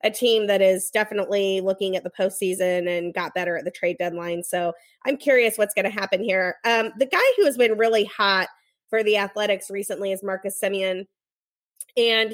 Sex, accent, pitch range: female, American, 185-220 Hz